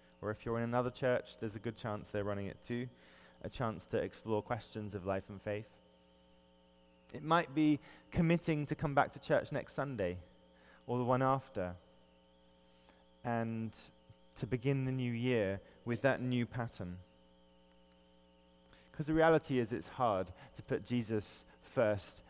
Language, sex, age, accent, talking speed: English, male, 20-39, British, 155 wpm